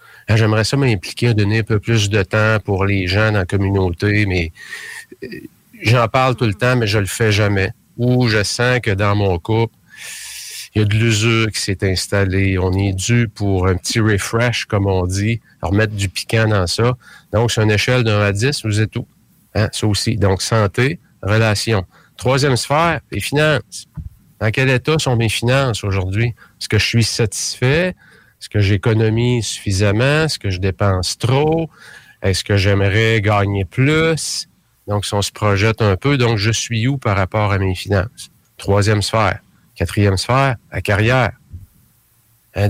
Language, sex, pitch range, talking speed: English, male, 100-120 Hz, 180 wpm